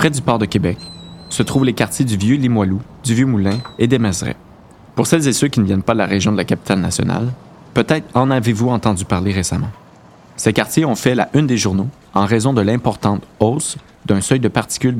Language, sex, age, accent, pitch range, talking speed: French, male, 30-49, Canadian, 100-130 Hz, 225 wpm